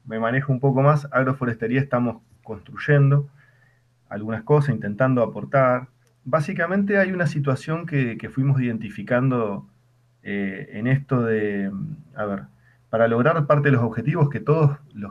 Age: 20-39